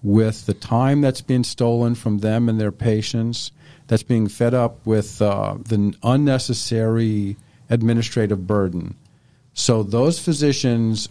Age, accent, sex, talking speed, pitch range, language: 50-69, American, male, 130 wpm, 105-130 Hz, English